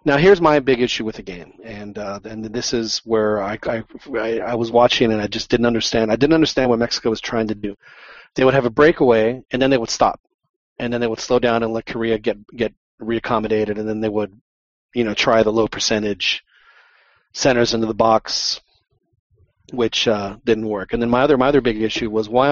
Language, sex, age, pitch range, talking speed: English, male, 30-49, 110-125 Hz, 220 wpm